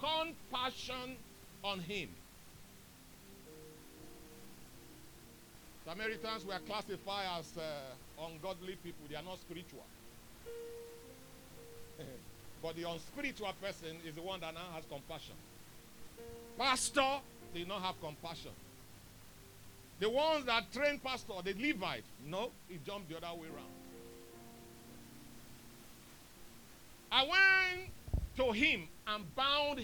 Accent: Nigerian